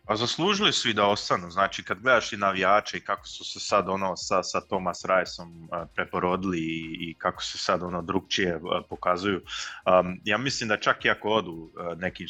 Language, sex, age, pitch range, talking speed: Croatian, male, 30-49, 90-110 Hz, 190 wpm